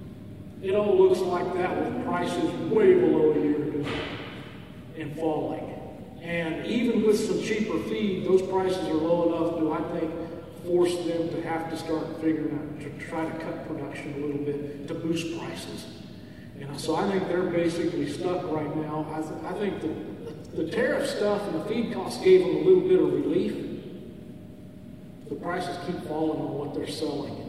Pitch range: 155-180 Hz